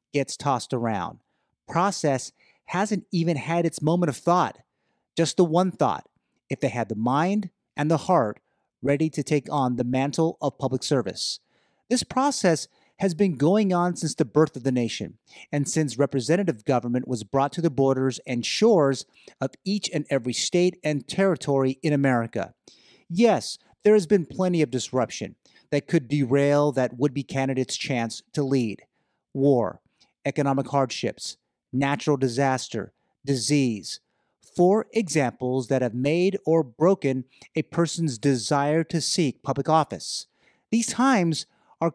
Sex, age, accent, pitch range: male, 30-49, American, 135-175 Hz